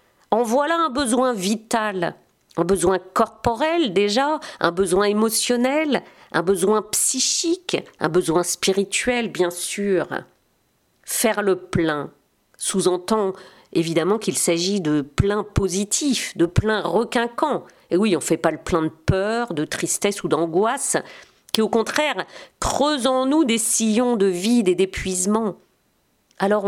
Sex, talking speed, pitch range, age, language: female, 135 wpm, 185-250 Hz, 50-69, French